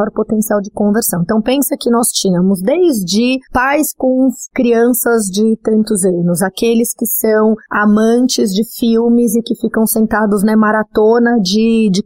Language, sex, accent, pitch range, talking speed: Portuguese, female, Brazilian, 200-240 Hz, 145 wpm